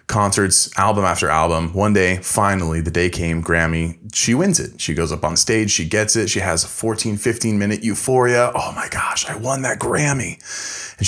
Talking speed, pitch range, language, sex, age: 200 wpm, 90-115 Hz, English, male, 30-49